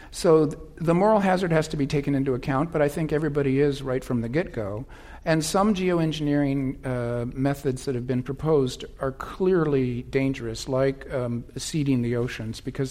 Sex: male